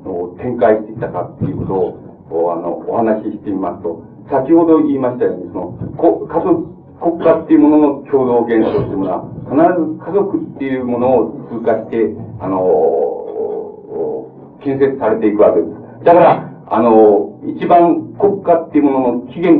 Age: 60-79